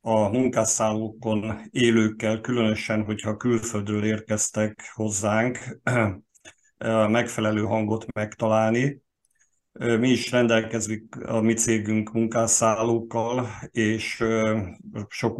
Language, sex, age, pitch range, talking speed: Hungarian, male, 50-69, 110-115 Hz, 75 wpm